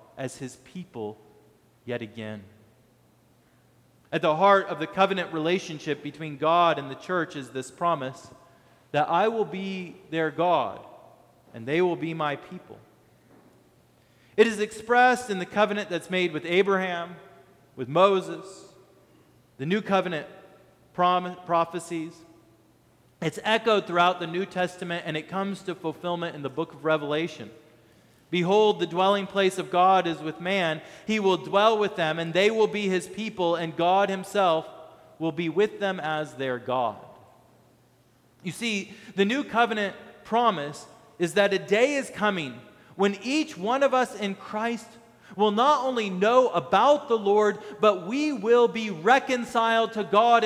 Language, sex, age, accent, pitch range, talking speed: English, male, 30-49, American, 160-215 Hz, 150 wpm